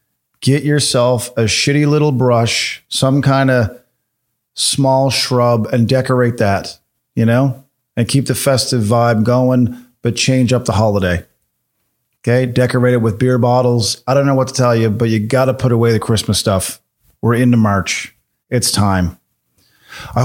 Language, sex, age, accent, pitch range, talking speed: English, male, 40-59, American, 105-130 Hz, 165 wpm